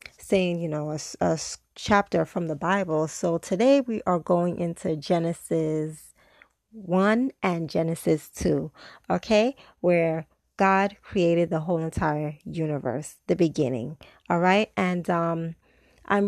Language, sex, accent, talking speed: English, female, American, 130 wpm